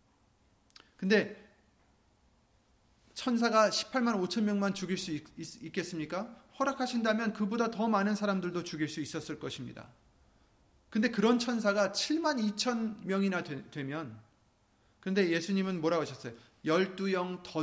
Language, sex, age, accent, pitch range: Korean, male, 30-49, native, 160-225 Hz